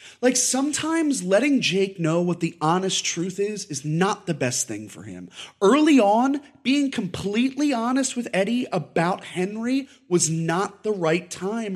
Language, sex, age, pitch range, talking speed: English, male, 30-49, 145-230 Hz, 160 wpm